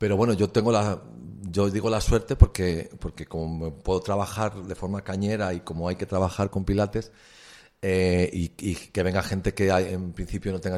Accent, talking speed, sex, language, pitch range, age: Spanish, 195 wpm, male, Spanish, 90-120 Hz, 40-59